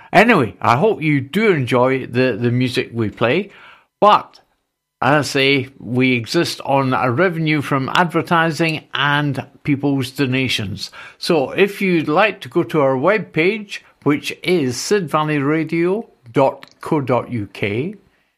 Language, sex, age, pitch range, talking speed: English, male, 60-79, 125-160 Hz, 125 wpm